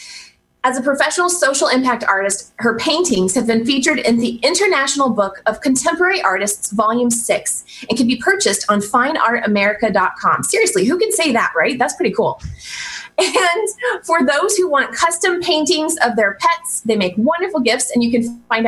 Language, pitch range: English, 220-310 Hz